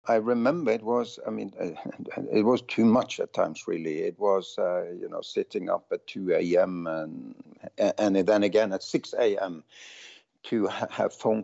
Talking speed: 180 wpm